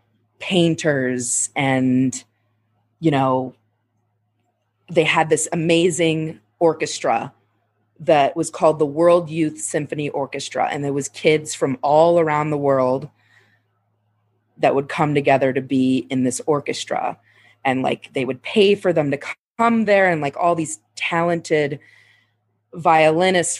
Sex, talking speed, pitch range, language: female, 130 wpm, 130-165 Hz, English